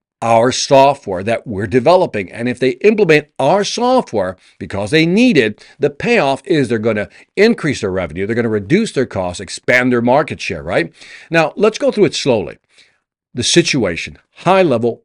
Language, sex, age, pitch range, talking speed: English, male, 50-69, 110-165 Hz, 180 wpm